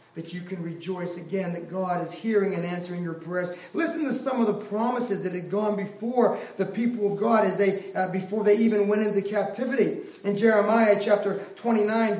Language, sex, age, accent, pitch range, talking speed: English, male, 30-49, American, 205-260 Hz, 195 wpm